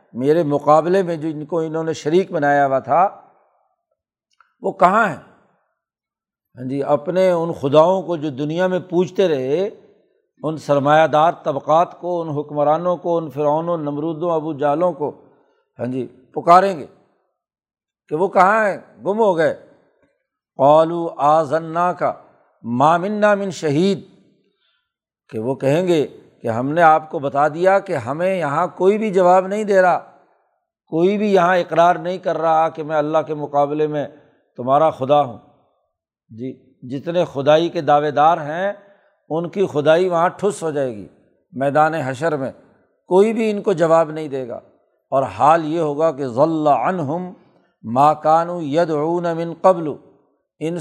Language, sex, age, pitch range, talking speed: Urdu, male, 60-79, 150-180 Hz, 155 wpm